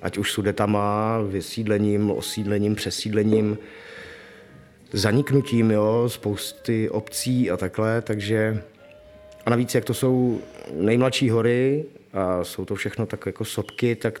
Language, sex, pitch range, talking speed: Czech, male, 100-120 Hz, 125 wpm